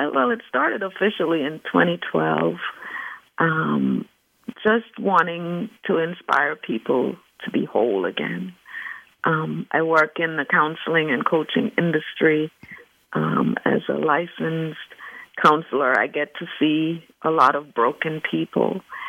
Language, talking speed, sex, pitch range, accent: English, 125 wpm, female, 145-170 Hz, American